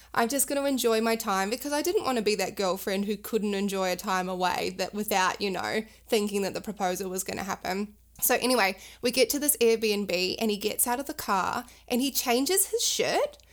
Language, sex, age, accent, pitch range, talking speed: English, female, 20-39, Australian, 210-275 Hz, 230 wpm